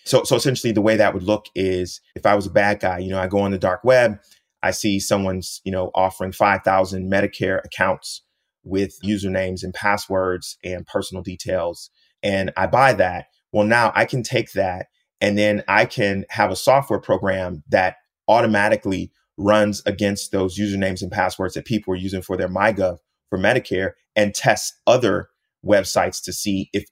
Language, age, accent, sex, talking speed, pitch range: English, 30-49, American, male, 180 wpm, 95-105 Hz